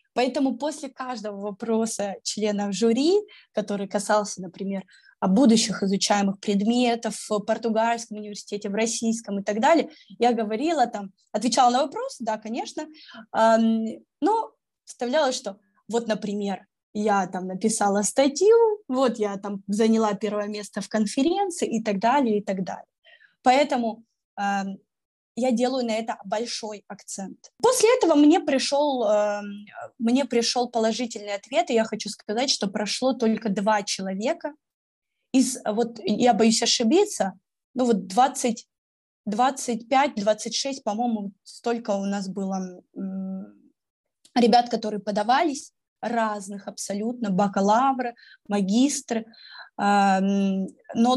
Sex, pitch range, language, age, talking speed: female, 205-250 Hz, Russian, 20-39, 115 wpm